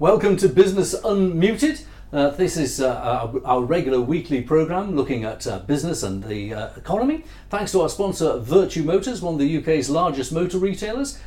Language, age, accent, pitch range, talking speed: English, 50-69, British, 130-190 Hz, 180 wpm